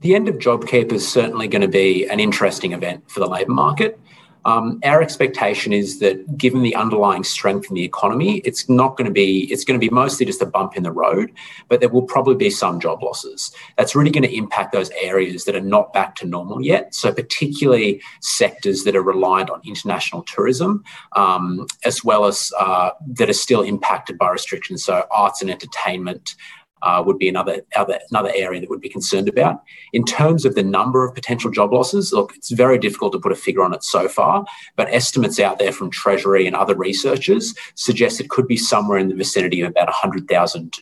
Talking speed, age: 210 wpm, 30-49